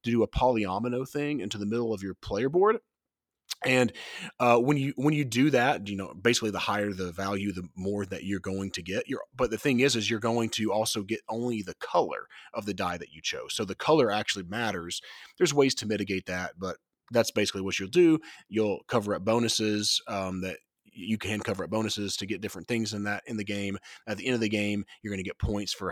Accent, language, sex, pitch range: American, English, male, 95-115 Hz